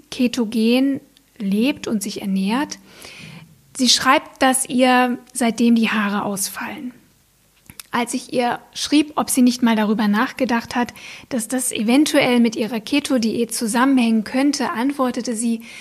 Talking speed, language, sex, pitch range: 130 wpm, German, female, 215-255 Hz